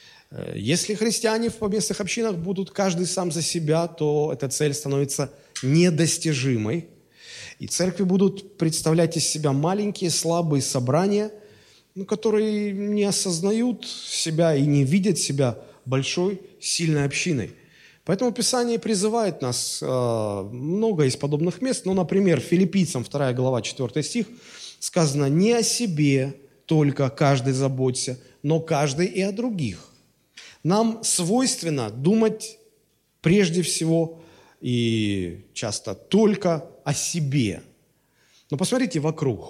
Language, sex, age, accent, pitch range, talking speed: Russian, male, 20-39, native, 135-195 Hz, 110 wpm